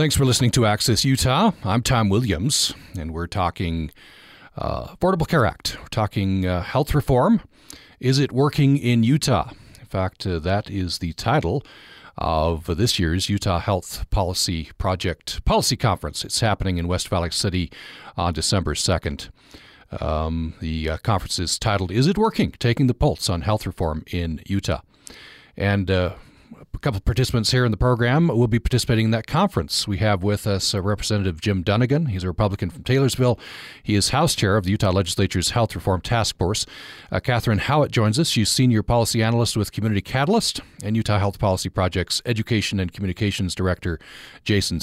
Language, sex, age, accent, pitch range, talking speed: English, male, 40-59, American, 90-120 Hz, 175 wpm